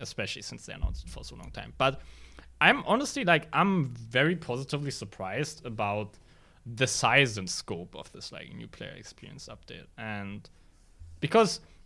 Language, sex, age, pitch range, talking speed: English, male, 20-39, 100-140 Hz, 155 wpm